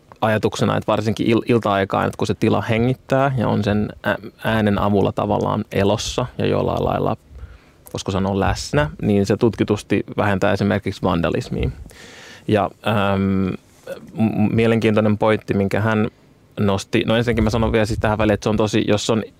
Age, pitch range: 20-39, 100-110 Hz